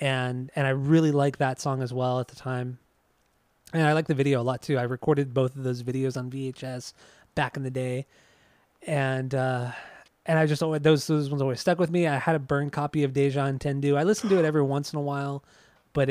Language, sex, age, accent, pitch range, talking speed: English, male, 20-39, American, 130-150 Hz, 240 wpm